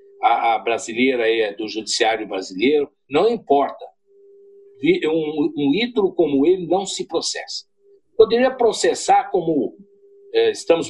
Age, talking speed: 60-79, 115 wpm